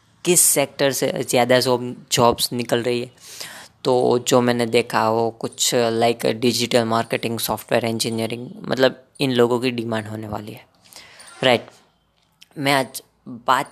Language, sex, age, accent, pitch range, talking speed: Hindi, female, 20-39, native, 120-140 Hz, 145 wpm